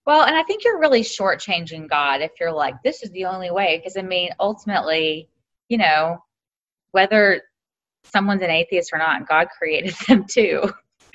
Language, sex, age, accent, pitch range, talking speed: English, female, 20-39, American, 170-230 Hz, 170 wpm